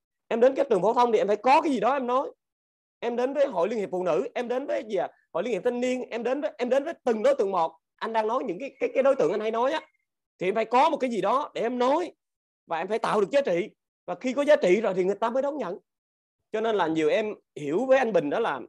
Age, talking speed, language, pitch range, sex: 30-49, 310 wpm, Vietnamese, 210-270 Hz, male